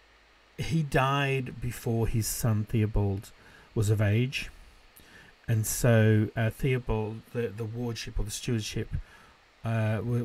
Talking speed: 115 wpm